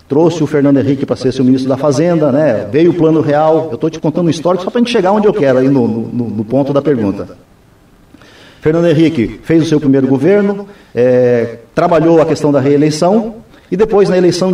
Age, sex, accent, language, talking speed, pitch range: 50-69, male, Brazilian, Portuguese, 220 wpm, 130-180 Hz